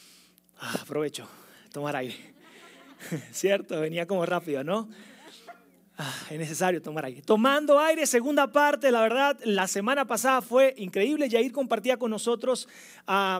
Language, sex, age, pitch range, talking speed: Spanish, male, 30-49, 185-240 Hz, 135 wpm